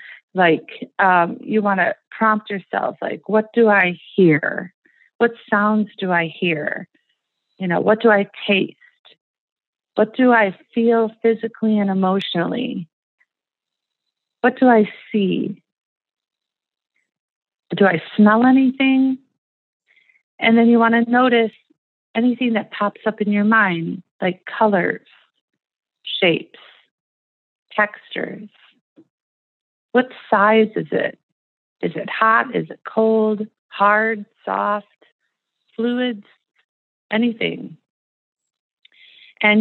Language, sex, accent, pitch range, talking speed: English, female, American, 195-240 Hz, 105 wpm